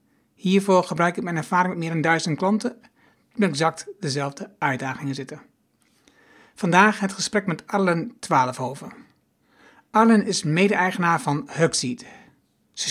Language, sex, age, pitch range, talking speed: Dutch, male, 60-79, 160-200 Hz, 130 wpm